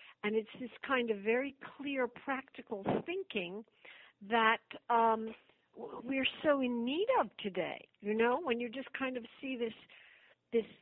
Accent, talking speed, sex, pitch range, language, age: American, 150 wpm, female, 185-235 Hz, English, 60-79